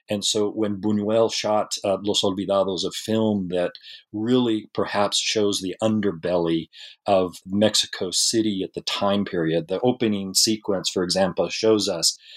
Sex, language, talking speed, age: male, English, 145 wpm, 40-59